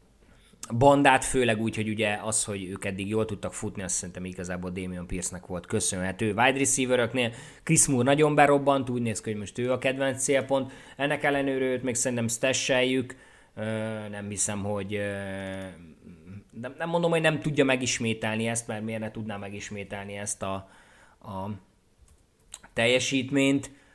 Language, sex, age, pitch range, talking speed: Hungarian, male, 20-39, 100-130 Hz, 155 wpm